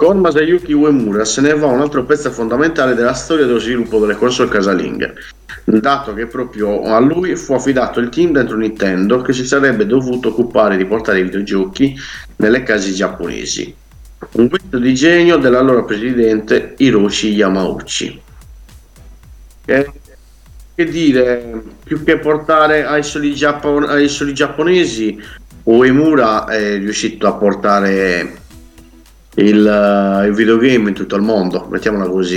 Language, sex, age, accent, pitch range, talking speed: Italian, male, 50-69, native, 100-130 Hz, 130 wpm